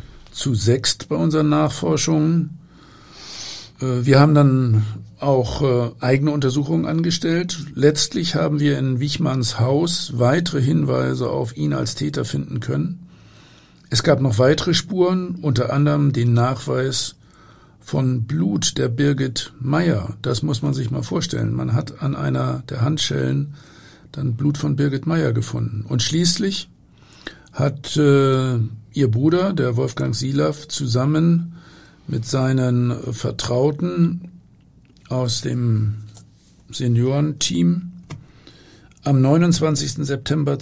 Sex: male